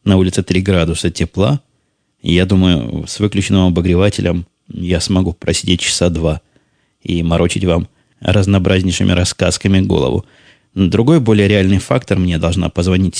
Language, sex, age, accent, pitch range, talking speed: Russian, male, 20-39, native, 90-105 Hz, 125 wpm